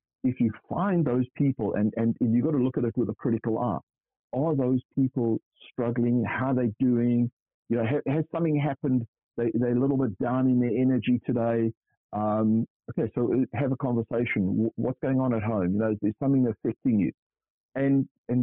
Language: English